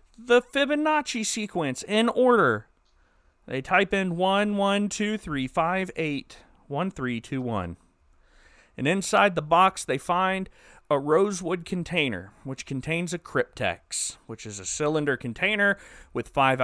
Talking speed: 105 wpm